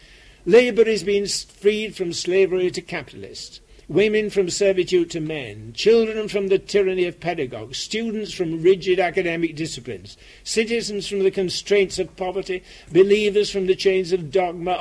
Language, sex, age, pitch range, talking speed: English, male, 60-79, 165-200 Hz, 145 wpm